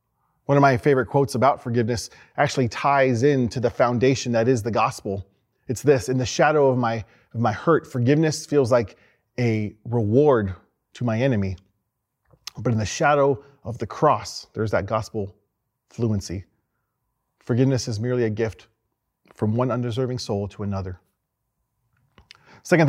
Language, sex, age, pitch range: English, male, 30-49, 110-135 Hz